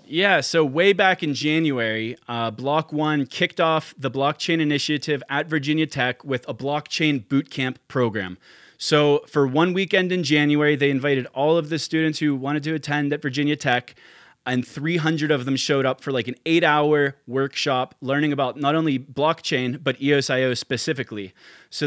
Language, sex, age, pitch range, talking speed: English, male, 20-39, 135-160 Hz, 170 wpm